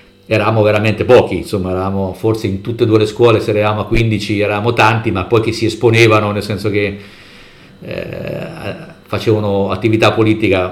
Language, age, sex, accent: Italian, 50-69, male, native